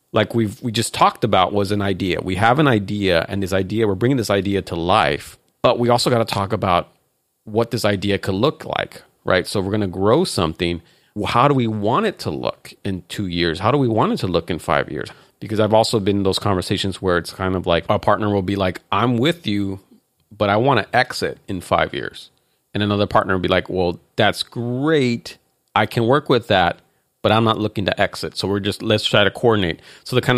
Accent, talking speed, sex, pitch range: American, 235 wpm, male, 95-115 Hz